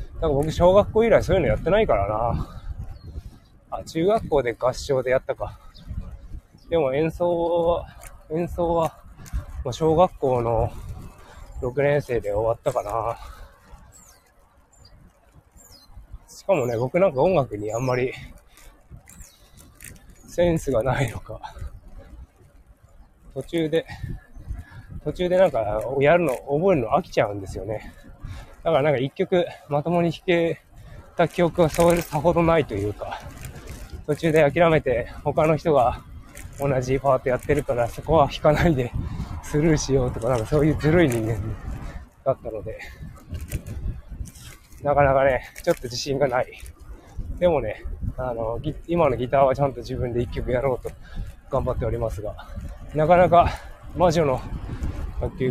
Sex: male